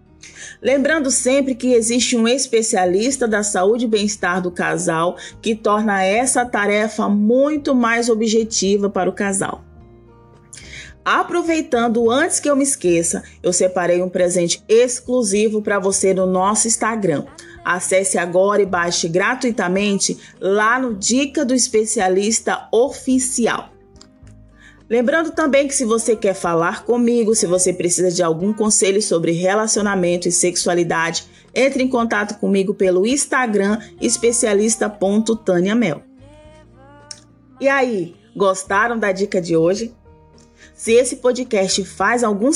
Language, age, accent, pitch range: Portuguese, 20-39, Brazilian, 185-245 Hz